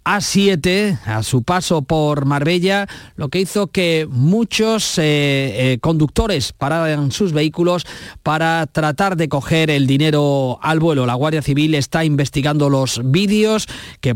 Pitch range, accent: 140-180 Hz, Spanish